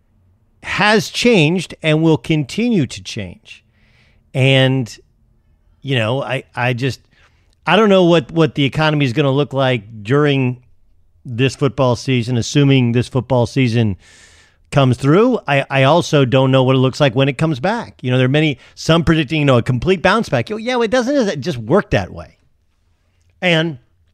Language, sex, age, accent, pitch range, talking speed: English, male, 50-69, American, 95-145 Hz, 175 wpm